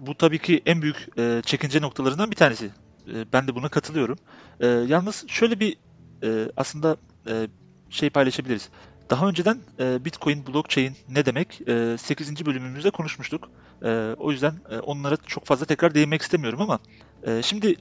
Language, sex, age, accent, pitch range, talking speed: Turkish, male, 40-59, native, 125-175 Hz, 130 wpm